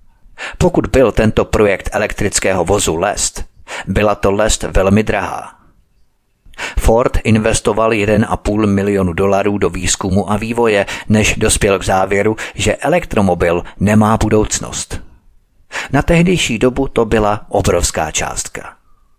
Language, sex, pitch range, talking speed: Czech, male, 95-115 Hz, 115 wpm